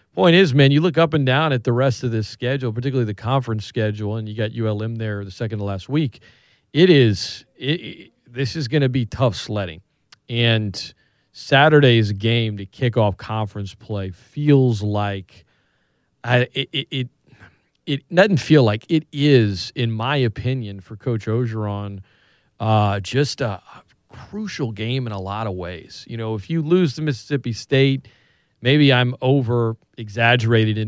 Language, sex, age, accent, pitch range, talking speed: English, male, 40-59, American, 110-135 Hz, 165 wpm